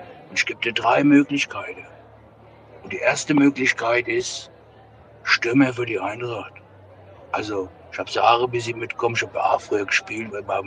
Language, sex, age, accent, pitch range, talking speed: German, male, 60-79, German, 105-135 Hz, 170 wpm